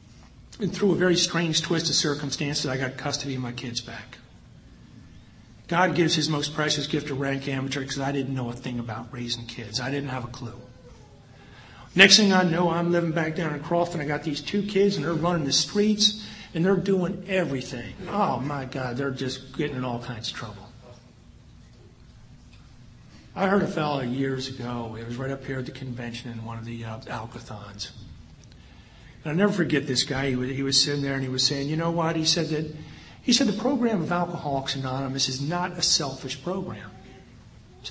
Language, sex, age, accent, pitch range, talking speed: English, male, 50-69, American, 125-175 Hz, 205 wpm